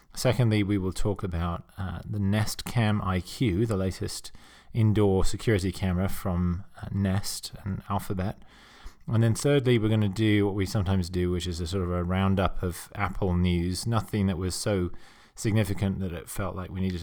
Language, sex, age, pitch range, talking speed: English, male, 30-49, 90-105 Hz, 185 wpm